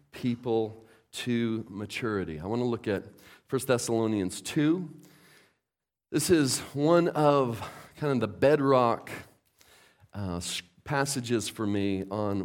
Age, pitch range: 40-59, 110-145 Hz